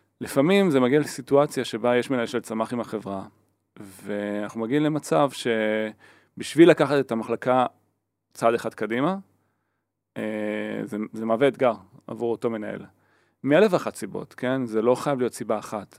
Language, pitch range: Hebrew, 105-125 Hz